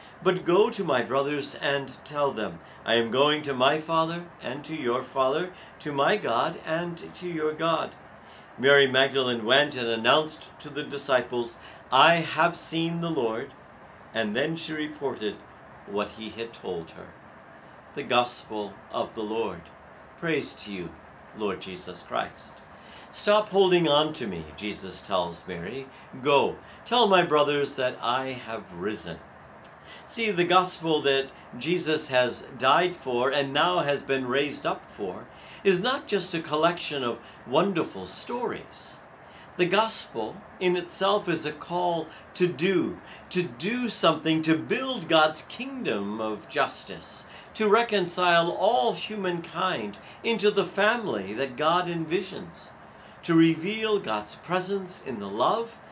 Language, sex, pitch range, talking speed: English, male, 130-180 Hz, 140 wpm